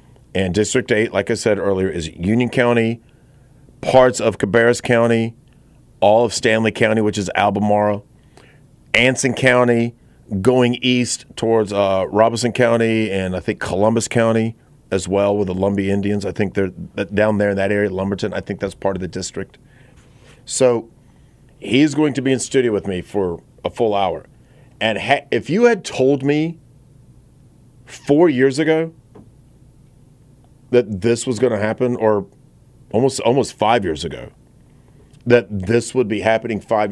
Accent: American